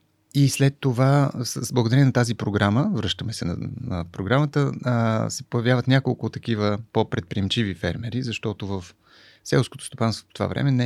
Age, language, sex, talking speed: 30-49, Bulgarian, male, 155 wpm